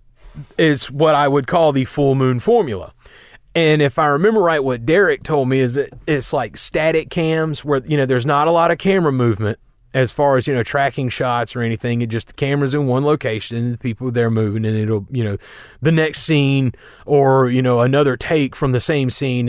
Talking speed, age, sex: 220 wpm, 30-49, male